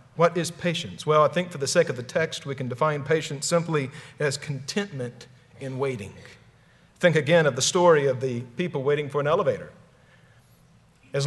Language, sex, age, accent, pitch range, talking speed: English, male, 50-69, American, 130-175 Hz, 180 wpm